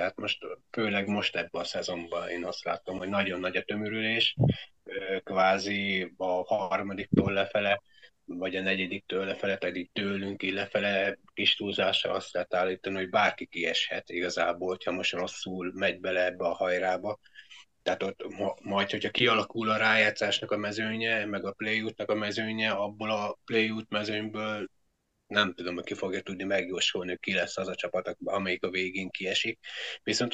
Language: Hungarian